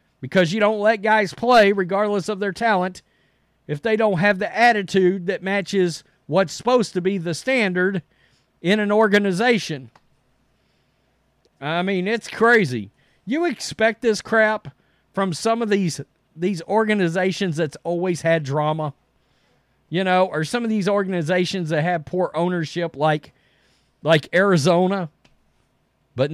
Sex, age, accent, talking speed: male, 40-59, American, 135 wpm